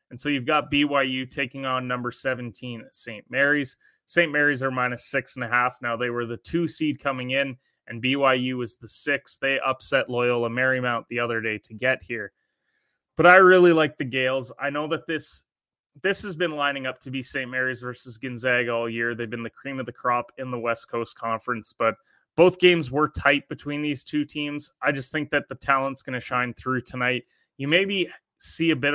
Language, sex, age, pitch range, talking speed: English, male, 20-39, 120-140 Hz, 215 wpm